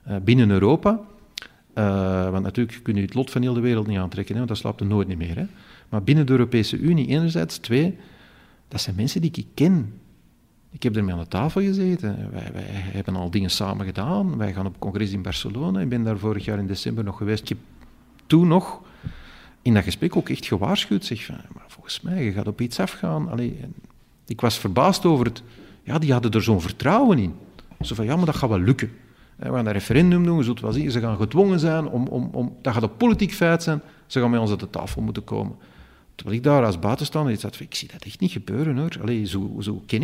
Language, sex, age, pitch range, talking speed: Dutch, male, 40-59, 100-140 Hz, 230 wpm